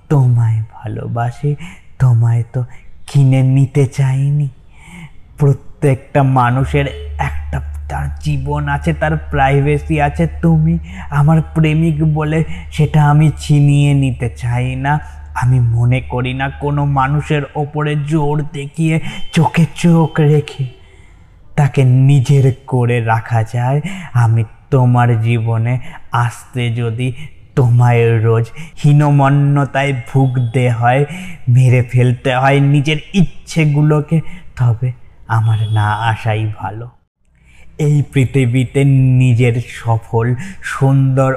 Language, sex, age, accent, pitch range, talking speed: Bengali, male, 20-39, native, 115-145 Hz, 55 wpm